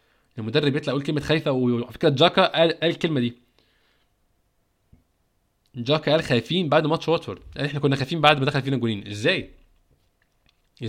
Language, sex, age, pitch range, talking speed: Arabic, male, 20-39, 125-165 Hz, 155 wpm